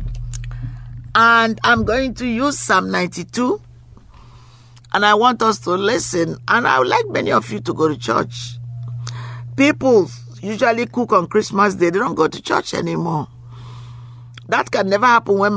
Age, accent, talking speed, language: 50-69, Nigerian, 160 wpm, English